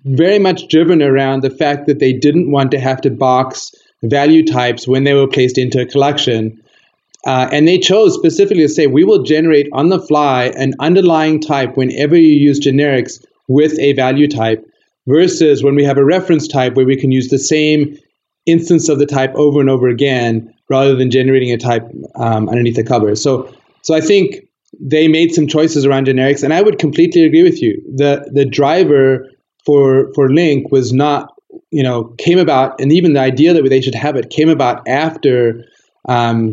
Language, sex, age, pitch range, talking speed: English, male, 30-49, 130-155 Hz, 195 wpm